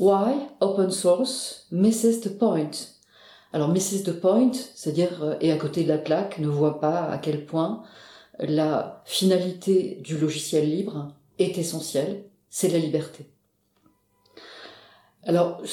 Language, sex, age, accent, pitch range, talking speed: French, female, 40-59, French, 160-195 Hz, 130 wpm